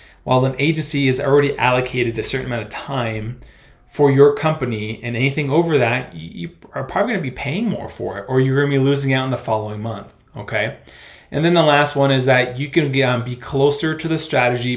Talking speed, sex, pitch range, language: 230 wpm, male, 120-145 Hz, English